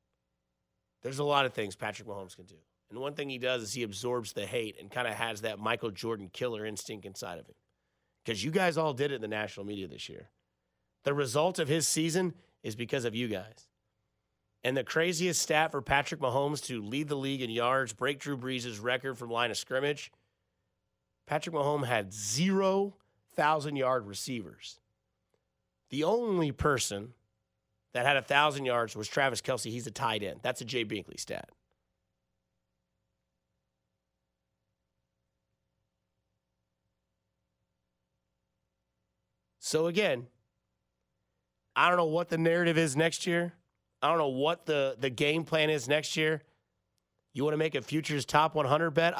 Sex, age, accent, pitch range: male, 30-49, American, 100-150 Hz